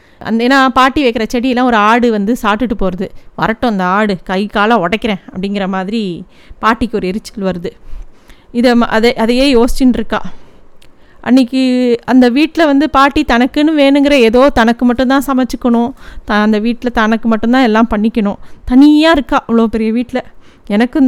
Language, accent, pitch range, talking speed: Tamil, native, 220-265 Hz, 145 wpm